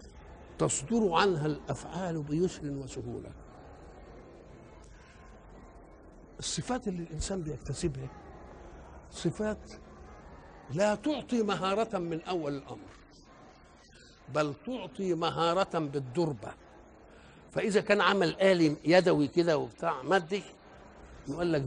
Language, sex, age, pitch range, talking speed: Arabic, male, 60-79, 140-185 Hz, 85 wpm